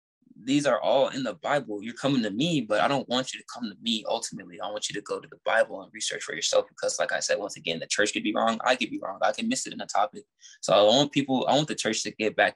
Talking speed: 310 wpm